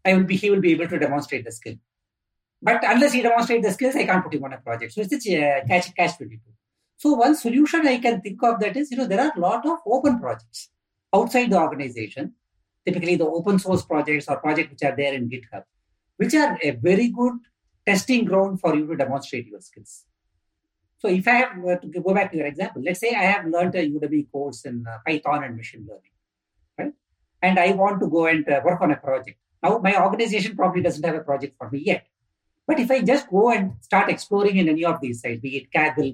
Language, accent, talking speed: English, Indian, 225 wpm